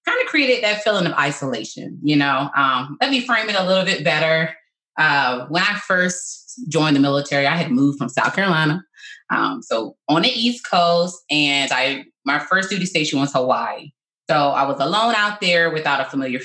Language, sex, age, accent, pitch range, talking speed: English, female, 20-39, American, 140-190 Hz, 195 wpm